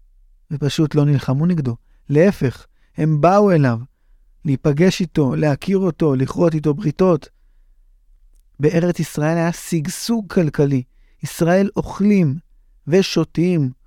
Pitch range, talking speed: 135-185 Hz, 100 wpm